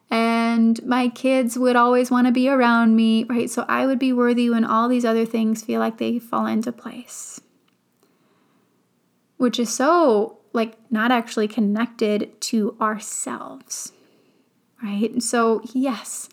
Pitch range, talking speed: 225-255 Hz, 145 wpm